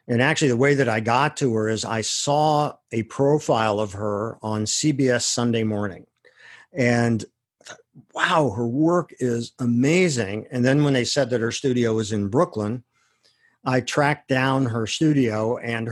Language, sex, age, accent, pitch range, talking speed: English, male, 50-69, American, 115-145 Hz, 160 wpm